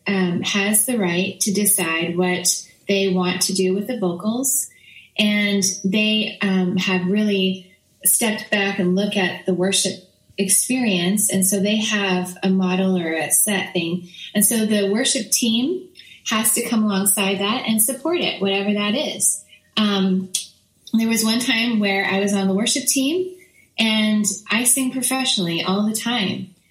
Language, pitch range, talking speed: English, 190-235 Hz, 160 wpm